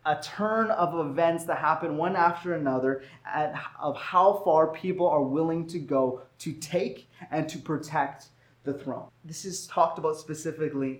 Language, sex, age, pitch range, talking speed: English, male, 20-39, 150-195 Hz, 165 wpm